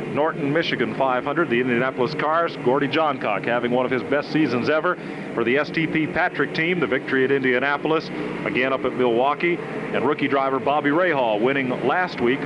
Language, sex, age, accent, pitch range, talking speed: English, male, 40-59, American, 135-175 Hz, 175 wpm